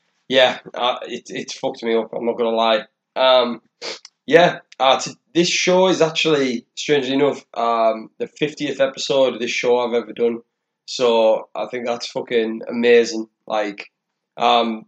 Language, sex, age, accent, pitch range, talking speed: English, male, 20-39, British, 115-130 Hz, 155 wpm